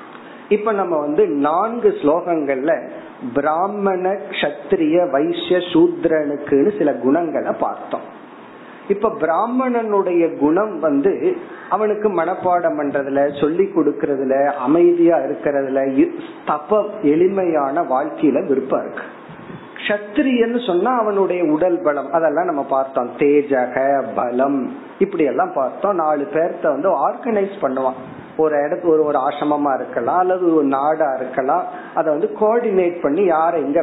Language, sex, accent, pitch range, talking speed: Tamil, male, native, 150-225 Hz, 95 wpm